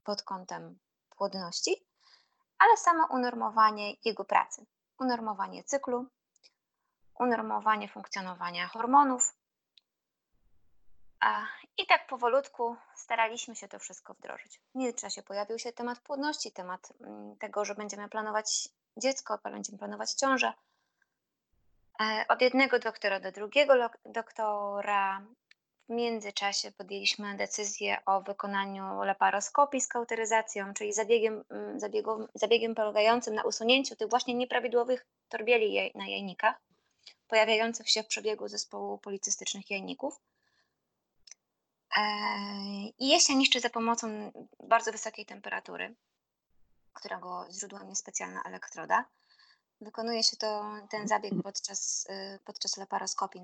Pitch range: 200-245 Hz